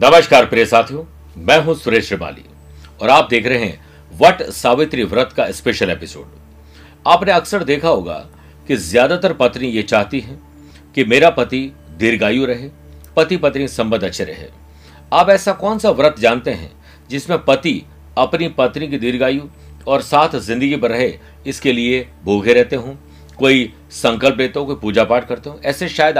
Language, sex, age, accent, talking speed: Hindi, male, 50-69, native, 165 wpm